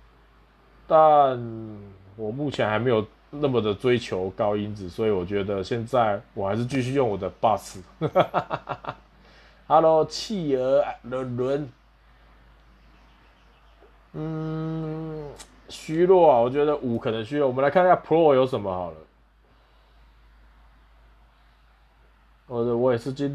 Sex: male